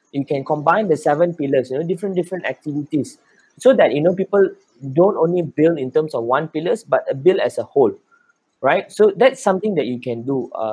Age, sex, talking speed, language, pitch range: 20-39, male, 220 wpm, English, 120-165 Hz